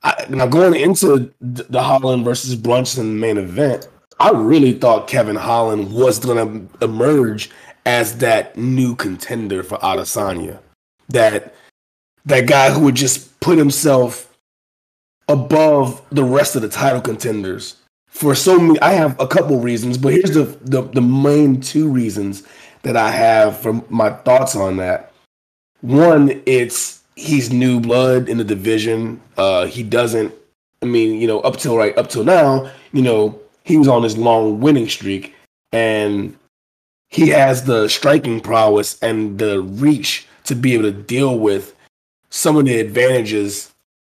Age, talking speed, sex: 30-49, 155 wpm, male